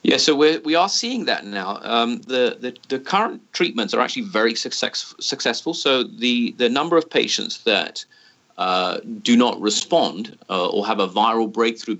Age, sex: 30-49, male